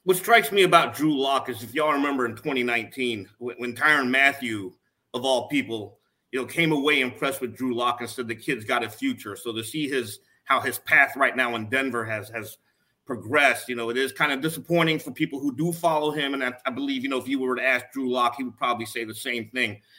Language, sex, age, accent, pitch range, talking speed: English, male, 30-49, American, 125-165 Hz, 240 wpm